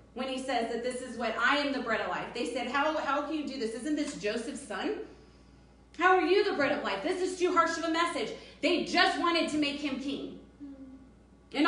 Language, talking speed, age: English, 240 wpm, 30-49